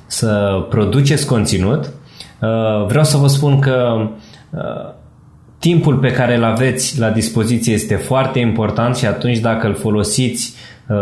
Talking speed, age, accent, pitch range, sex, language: 135 wpm, 20-39, native, 105-130 Hz, male, Romanian